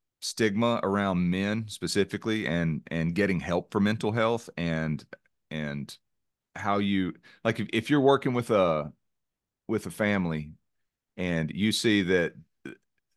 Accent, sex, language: American, male, English